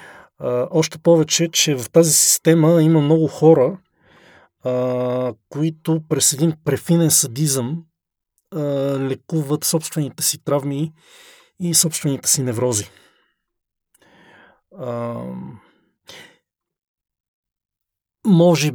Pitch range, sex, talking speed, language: 130-160 Hz, male, 85 wpm, Bulgarian